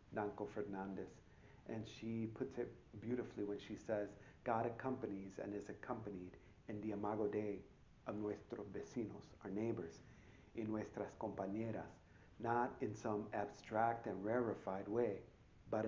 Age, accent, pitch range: 50-69, American, 105-120 Hz